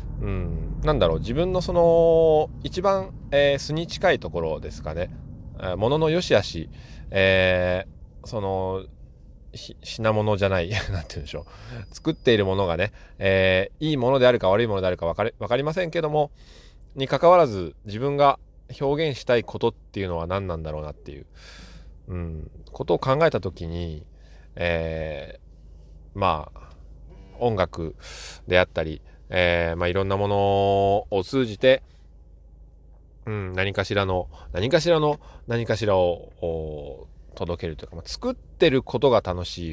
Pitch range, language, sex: 80-125 Hz, Japanese, male